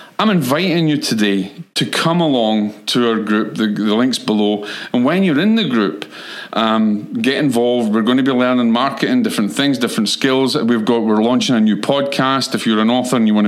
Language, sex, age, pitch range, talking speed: English, male, 40-59, 105-135 Hz, 210 wpm